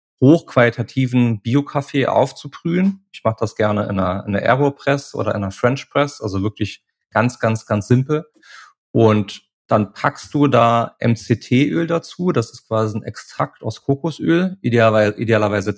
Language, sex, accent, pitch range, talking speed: German, male, German, 105-130 Hz, 150 wpm